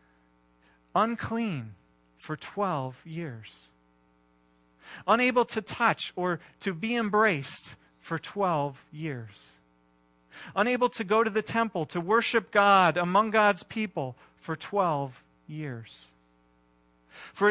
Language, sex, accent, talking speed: English, male, American, 105 wpm